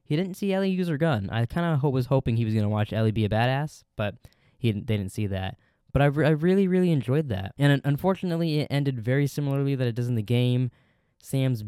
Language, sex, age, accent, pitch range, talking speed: English, male, 10-29, American, 110-140 Hz, 240 wpm